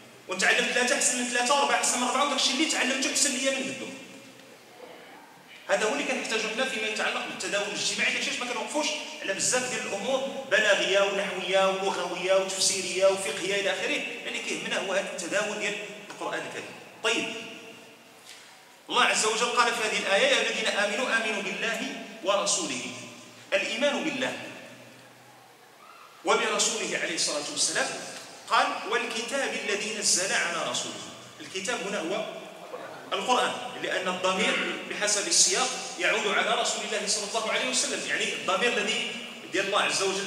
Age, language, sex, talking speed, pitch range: 40-59, Arabic, male, 140 wpm, 200-270 Hz